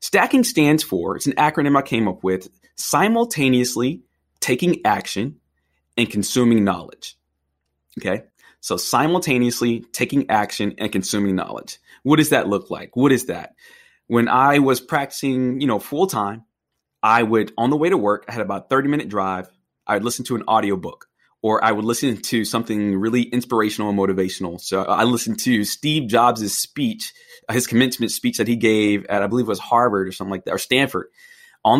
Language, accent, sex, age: English, American, male, 30-49